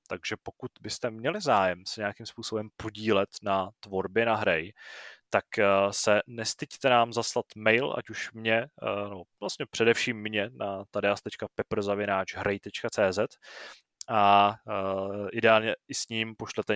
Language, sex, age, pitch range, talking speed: Czech, male, 20-39, 100-125 Hz, 120 wpm